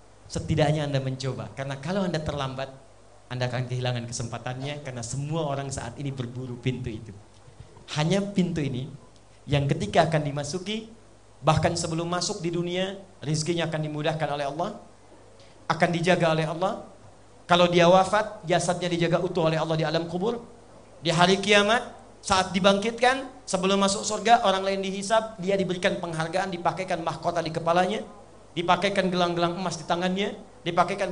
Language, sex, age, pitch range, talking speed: Indonesian, male, 40-59, 155-200 Hz, 145 wpm